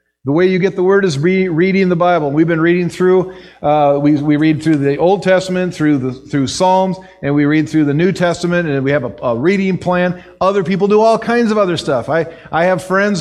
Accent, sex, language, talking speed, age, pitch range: American, male, English, 240 wpm, 50-69, 140-180 Hz